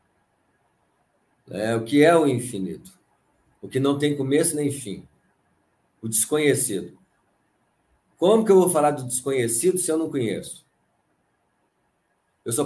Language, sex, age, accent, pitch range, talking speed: Portuguese, male, 50-69, Brazilian, 115-155 Hz, 135 wpm